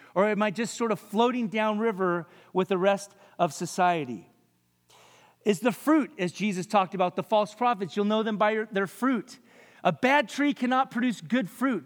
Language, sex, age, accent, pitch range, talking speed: English, male, 40-59, American, 175-235 Hz, 185 wpm